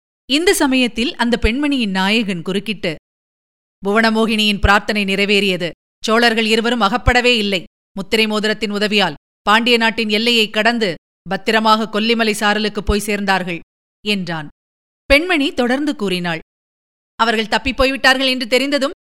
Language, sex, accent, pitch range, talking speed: Tamil, female, native, 220-275 Hz, 105 wpm